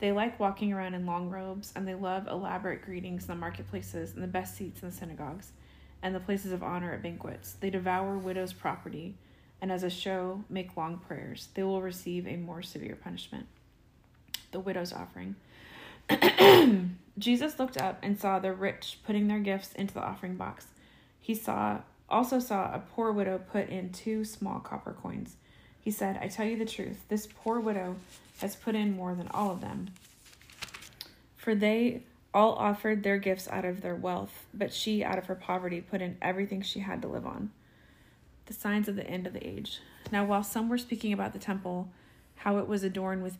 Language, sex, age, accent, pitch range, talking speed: English, female, 30-49, American, 180-205 Hz, 195 wpm